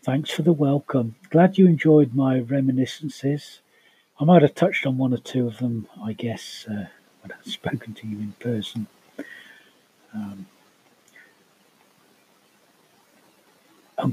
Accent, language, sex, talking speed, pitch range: British, English, male, 130 wpm, 120-155 Hz